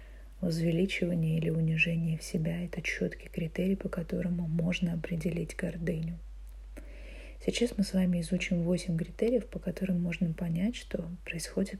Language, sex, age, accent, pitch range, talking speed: Russian, female, 20-39, native, 165-185 Hz, 130 wpm